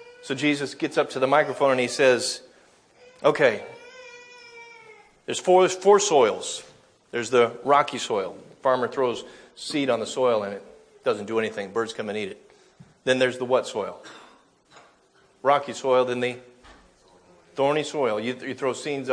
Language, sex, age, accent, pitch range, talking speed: English, male, 40-59, American, 130-205 Hz, 165 wpm